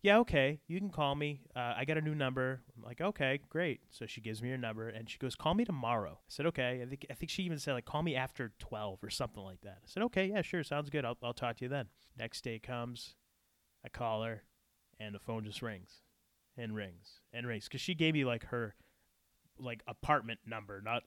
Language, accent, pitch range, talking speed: English, American, 110-140 Hz, 240 wpm